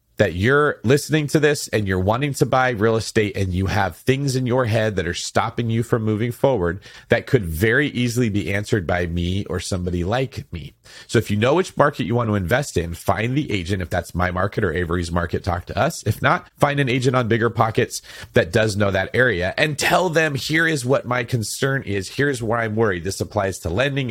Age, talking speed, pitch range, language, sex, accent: 30-49, 230 wpm, 90-130 Hz, English, male, American